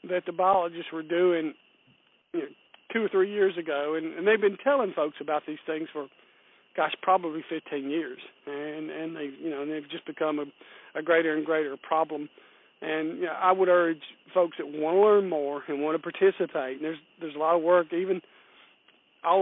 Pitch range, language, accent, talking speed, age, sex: 150-175 Hz, English, American, 200 wpm, 50-69, male